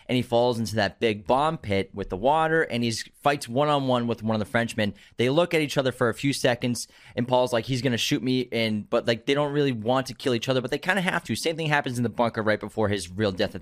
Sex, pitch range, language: male, 110-135 Hz, English